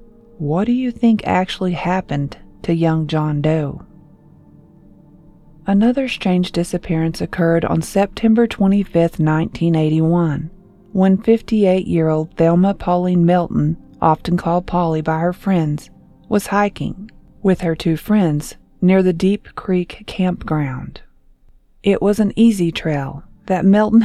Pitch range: 165-205 Hz